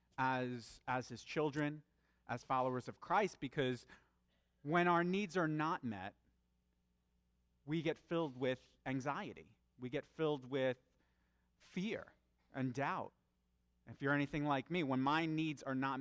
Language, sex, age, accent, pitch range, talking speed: English, male, 30-49, American, 105-140 Hz, 140 wpm